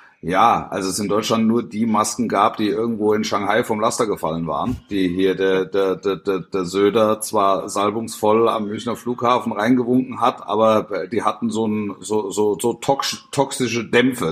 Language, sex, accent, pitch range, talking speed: German, male, German, 105-130 Hz, 170 wpm